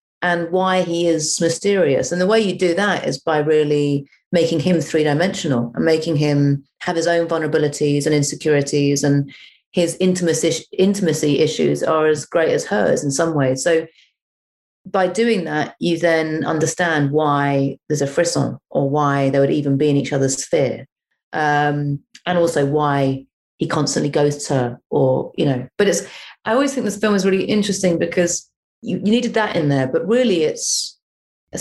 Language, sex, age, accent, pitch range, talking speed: English, female, 30-49, British, 140-180 Hz, 175 wpm